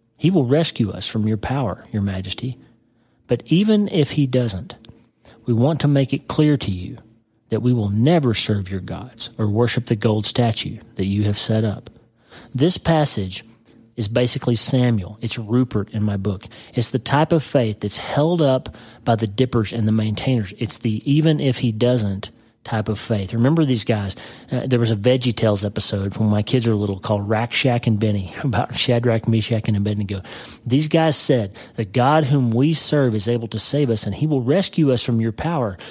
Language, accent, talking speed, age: English, American, 195 wpm, 40-59